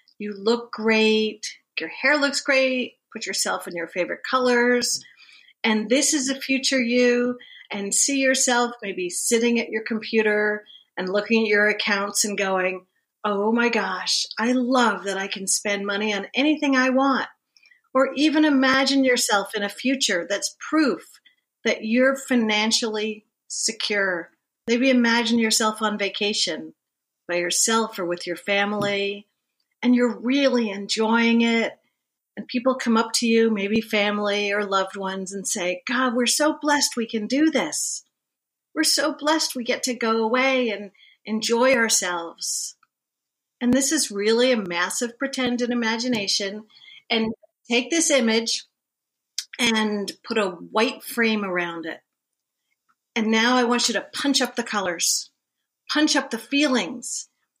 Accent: American